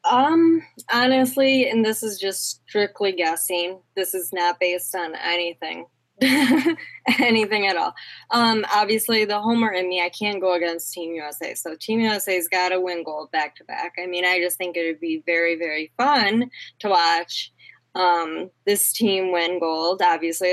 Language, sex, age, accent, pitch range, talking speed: English, female, 10-29, American, 175-230 Hz, 165 wpm